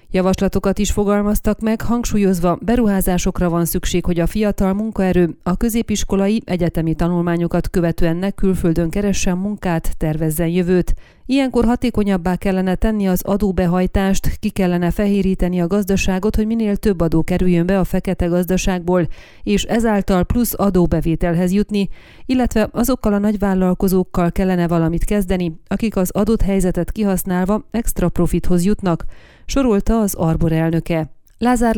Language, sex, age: Hungarian, female, 30-49